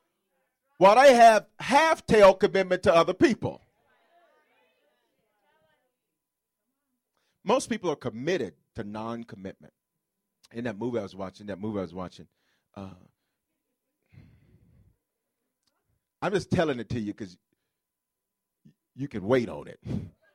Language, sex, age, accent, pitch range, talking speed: English, male, 40-59, American, 140-195 Hz, 110 wpm